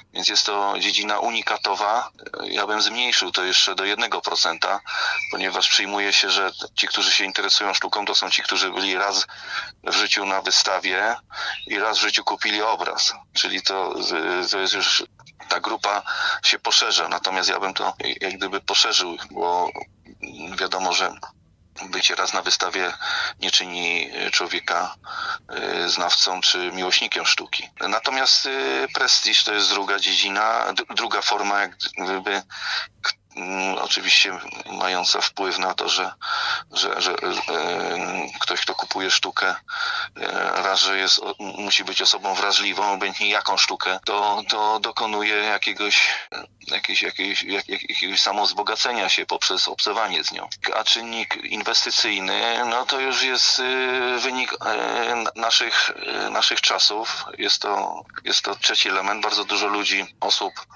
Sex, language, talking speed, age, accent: male, Polish, 135 wpm, 30-49, native